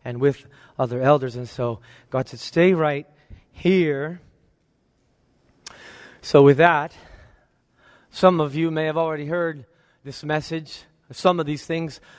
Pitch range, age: 140-185 Hz, 30-49